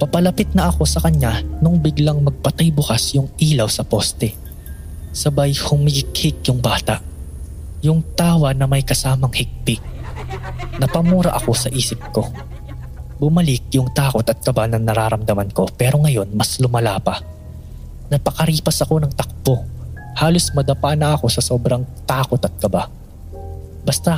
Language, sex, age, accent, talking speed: English, male, 20-39, Filipino, 135 wpm